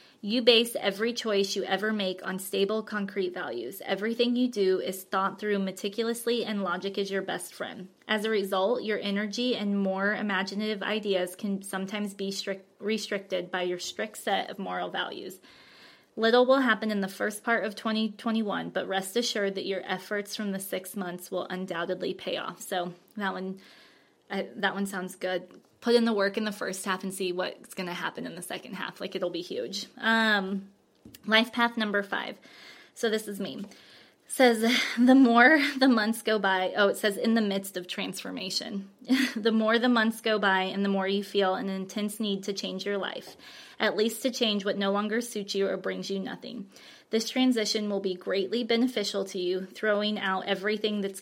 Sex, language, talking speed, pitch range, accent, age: female, English, 190 wpm, 190-220 Hz, American, 20-39